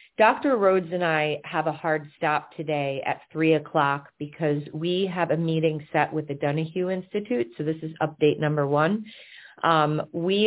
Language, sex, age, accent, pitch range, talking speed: English, female, 30-49, American, 145-170 Hz, 170 wpm